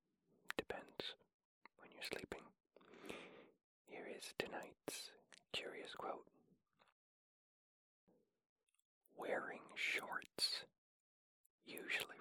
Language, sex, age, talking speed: English, male, 40-59, 60 wpm